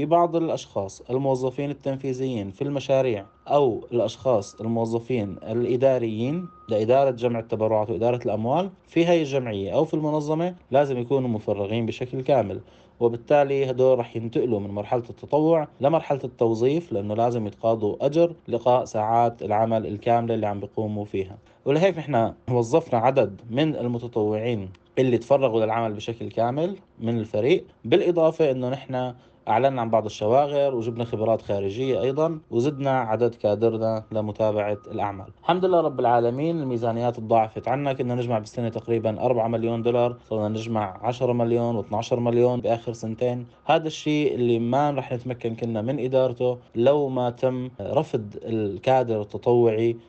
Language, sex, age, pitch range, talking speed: Arabic, male, 30-49, 115-135 Hz, 135 wpm